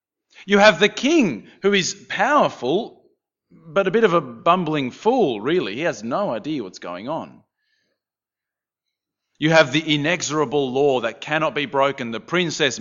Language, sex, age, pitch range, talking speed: English, male, 30-49, 135-200 Hz, 155 wpm